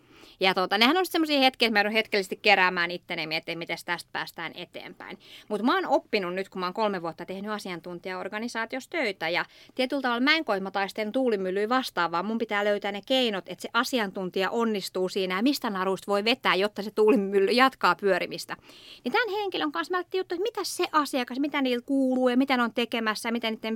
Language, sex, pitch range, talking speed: Finnish, female, 180-255 Hz, 190 wpm